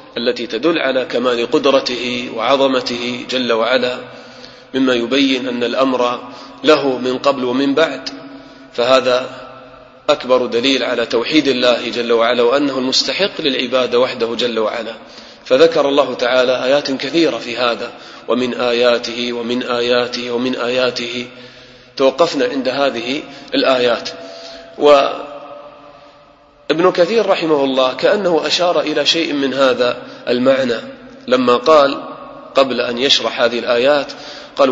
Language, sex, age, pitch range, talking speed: English, male, 30-49, 125-150 Hz, 120 wpm